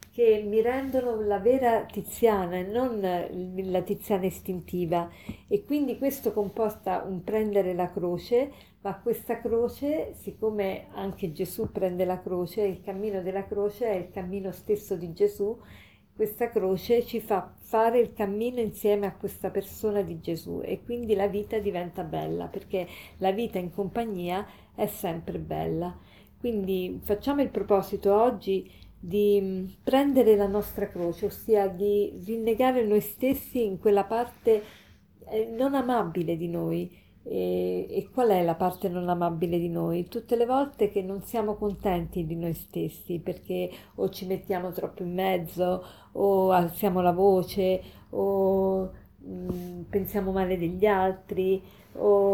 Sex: female